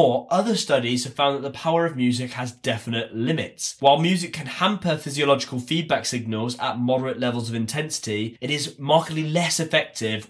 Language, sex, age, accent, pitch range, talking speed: English, male, 20-39, British, 115-150 Hz, 170 wpm